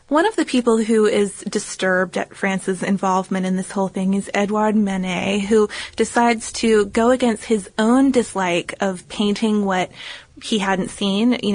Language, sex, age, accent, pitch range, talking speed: English, female, 20-39, American, 195-240 Hz, 165 wpm